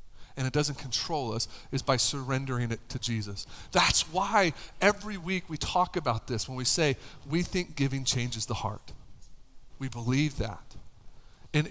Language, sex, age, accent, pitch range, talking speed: English, male, 40-59, American, 120-175 Hz, 165 wpm